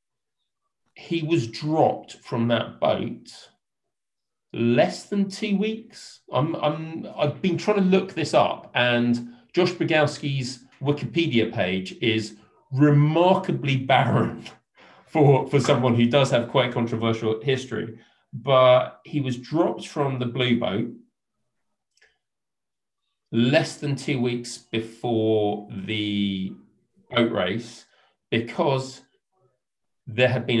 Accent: British